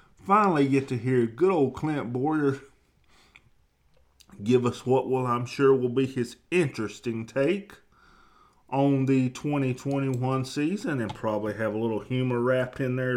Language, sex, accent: English, male, American